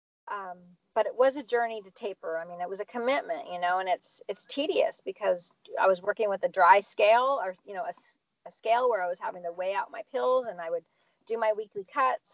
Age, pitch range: 40-59, 195-280 Hz